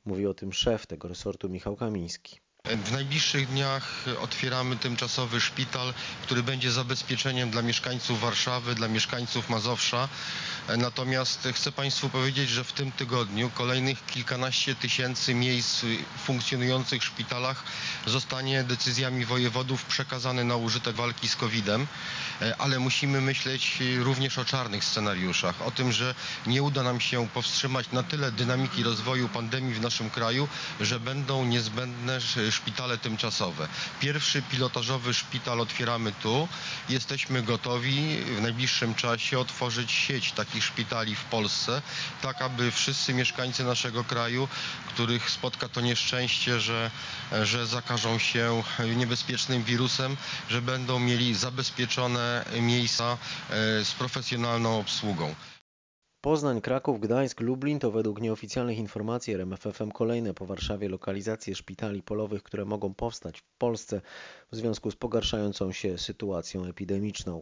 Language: Polish